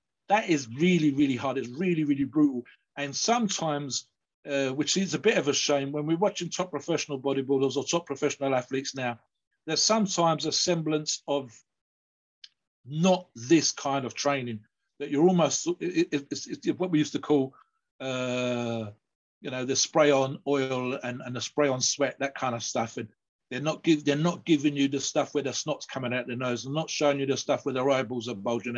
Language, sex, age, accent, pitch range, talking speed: English, male, 50-69, British, 125-155 Hz, 205 wpm